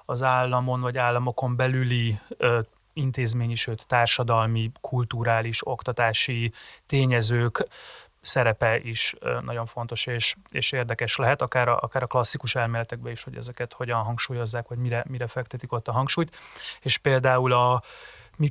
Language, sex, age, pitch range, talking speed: Hungarian, male, 30-49, 120-130 Hz, 140 wpm